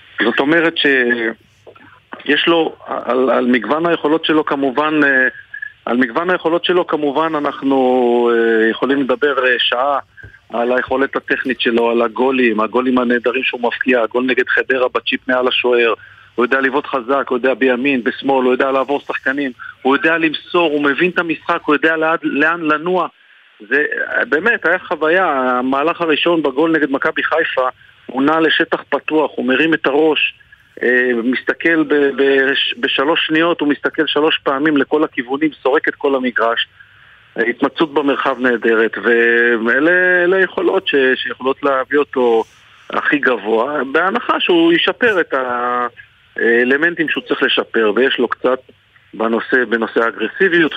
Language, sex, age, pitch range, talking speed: Hebrew, male, 40-59, 125-160 Hz, 130 wpm